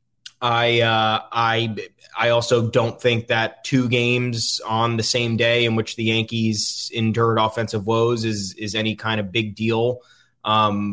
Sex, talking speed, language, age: male, 160 wpm, English, 20-39